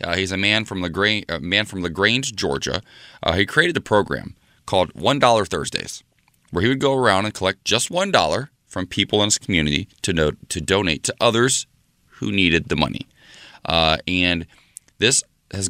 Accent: American